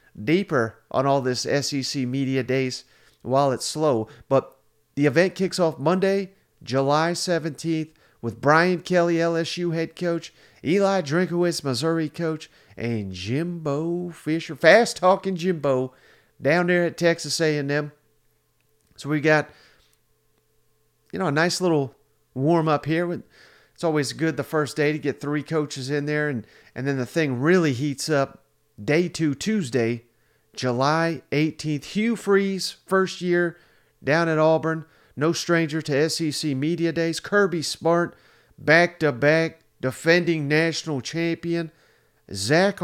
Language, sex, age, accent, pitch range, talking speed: English, male, 40-59, American, 140-170 Hz, 130 wpm